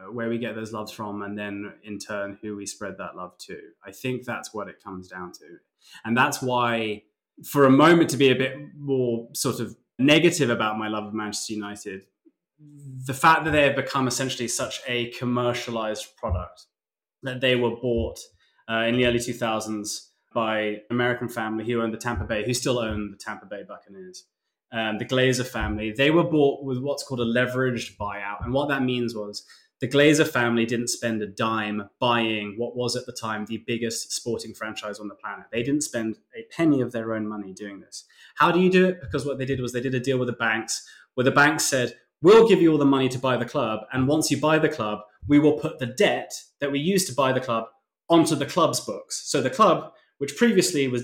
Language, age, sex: English, 20-39, male